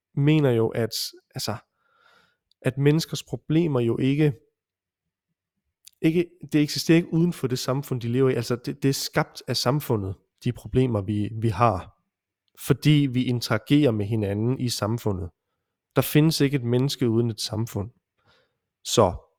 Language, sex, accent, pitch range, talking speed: Danish, male, native, 115-145 Hz, 145 wpm